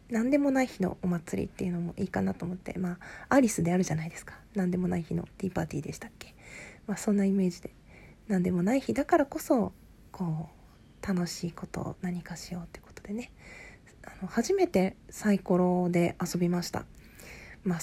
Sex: female